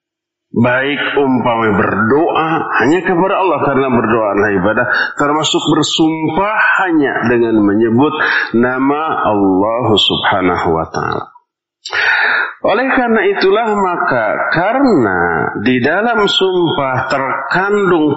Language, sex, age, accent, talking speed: Indonesian, male, 40-59, native, 95 wpm